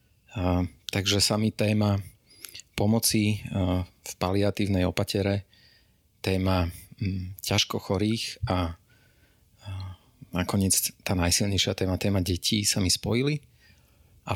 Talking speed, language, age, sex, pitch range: 105 wpm, Slovak, 30-49, male, 95-105 Hz